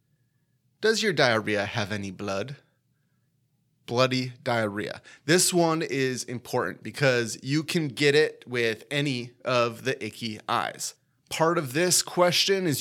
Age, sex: 30-49, male